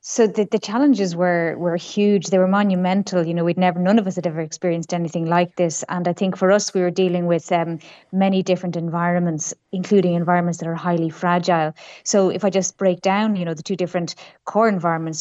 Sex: female